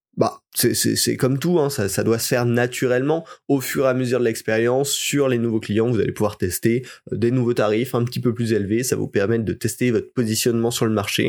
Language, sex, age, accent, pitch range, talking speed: French, male, 20-39, French, 105-125 Hz, 245 wpm